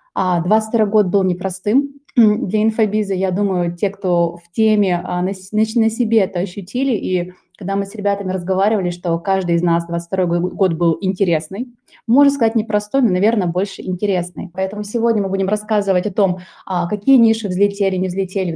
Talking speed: 160 wpm